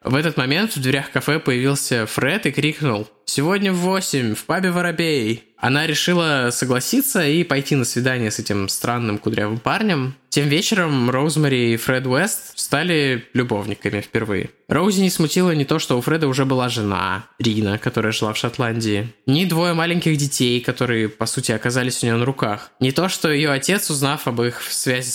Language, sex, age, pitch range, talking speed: Russian, male, 20-39, 120-150 Hz, 175 wpm